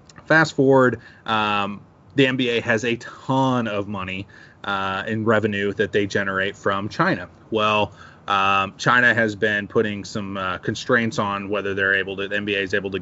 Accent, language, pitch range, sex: American, English, 105-135 Hz, male